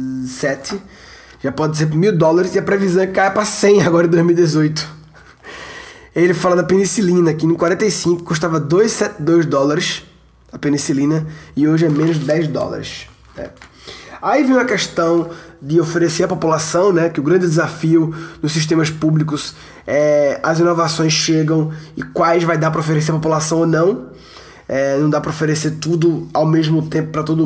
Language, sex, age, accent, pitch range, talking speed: Portuguese, male, 20-39, Brazilian, 155-180 Hz, 170 wpm